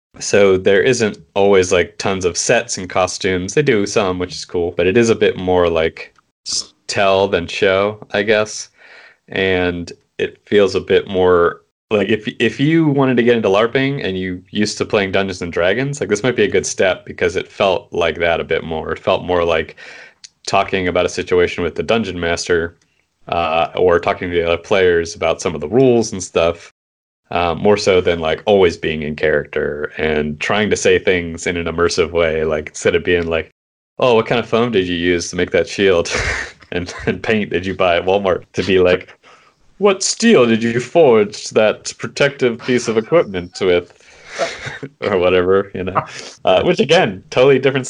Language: English